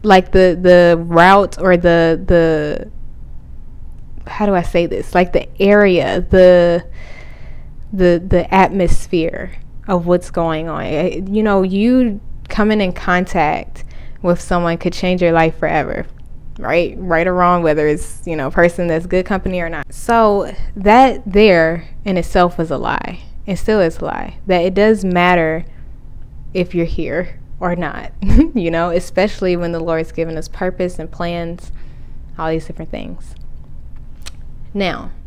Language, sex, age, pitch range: English, female, 10-29, 170-195 Hz